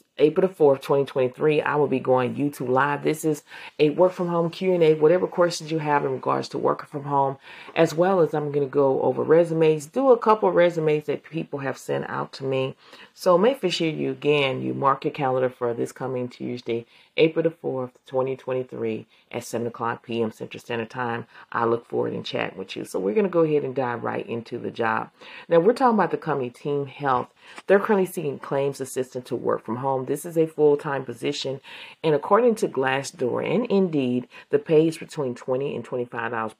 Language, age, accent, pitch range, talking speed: English, 40-59, American, 130-160 Hz, 205 wpm